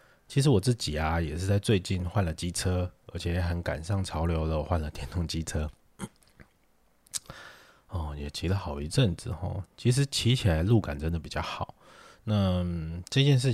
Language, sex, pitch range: Chinese, male, 80-100 Hz